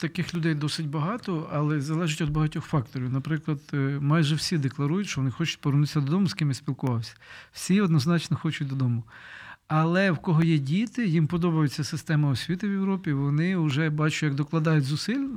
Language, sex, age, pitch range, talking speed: Ukrainian, male, 40-59, 145-170 Hz, 165 wpm